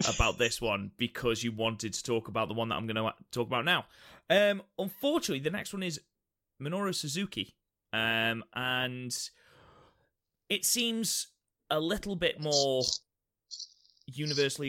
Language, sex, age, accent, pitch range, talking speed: English, male, 30-49, British, 110-135 Hz, 145 wpm